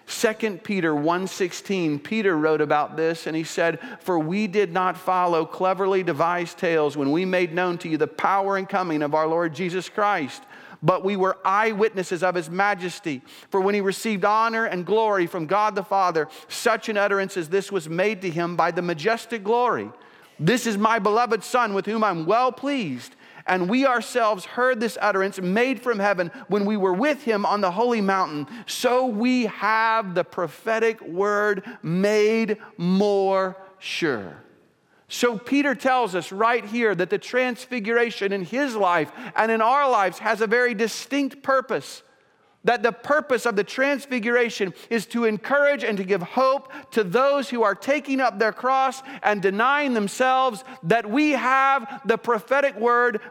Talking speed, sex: 175 wpm, male